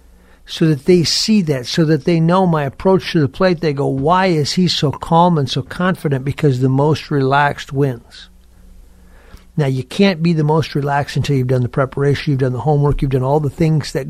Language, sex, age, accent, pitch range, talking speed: English, male, 60-79, American, 120-170 Hz, 215 wpm